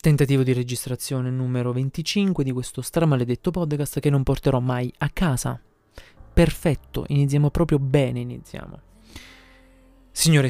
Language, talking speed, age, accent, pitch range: Italian, 120 wpm, 20-39, native, 125-145 Hz